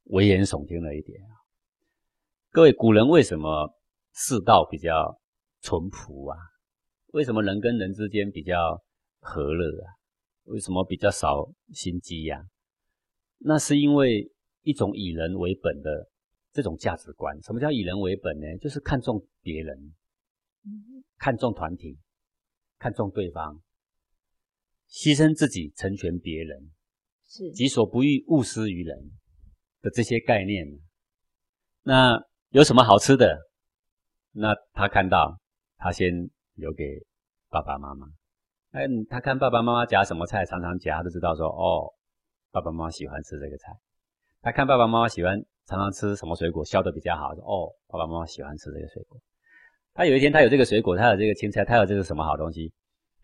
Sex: male